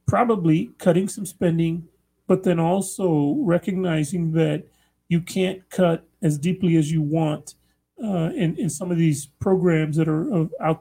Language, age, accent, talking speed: English, 30-49, American, 150 wpm